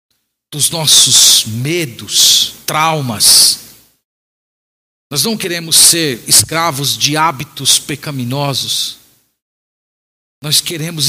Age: 50-69